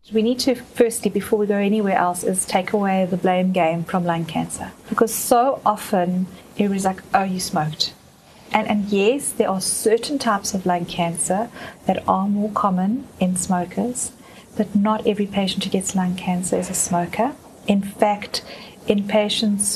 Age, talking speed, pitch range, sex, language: 30-49, 175 wpm, 180-210 Hz, female, English